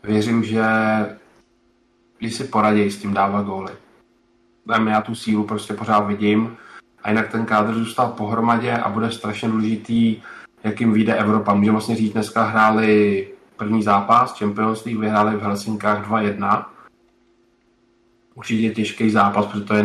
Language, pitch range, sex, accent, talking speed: Czech, 105-115 Hz, male, native, 135 wpm